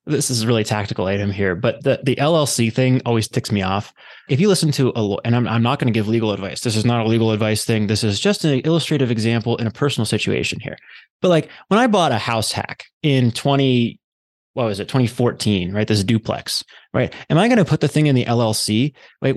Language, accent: English, American